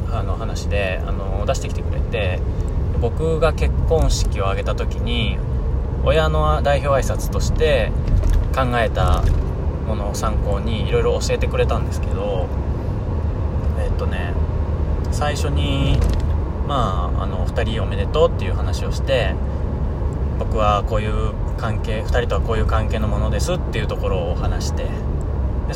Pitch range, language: 75-95 Hz, Japanese